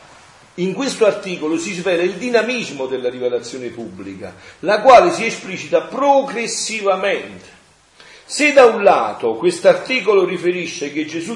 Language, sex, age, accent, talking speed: Italian, male, 40-59, native, 120 wpm